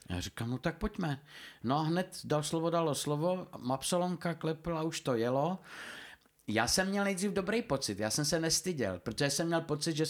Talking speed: 190 wpm